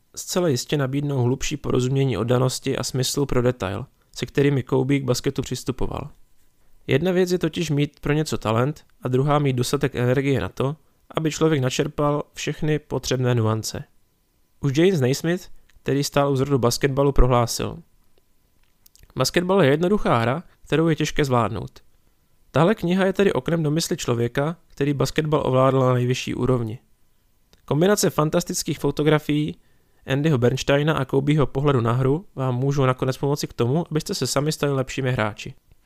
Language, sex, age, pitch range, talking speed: Czech, male, 20-39, 125-150 Hz, 150 wpm